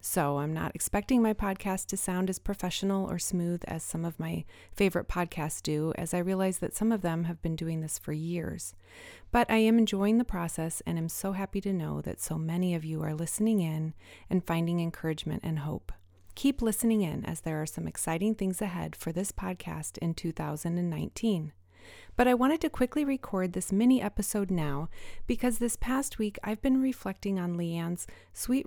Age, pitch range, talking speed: 30-49, 155-205 Hz, 190 wpm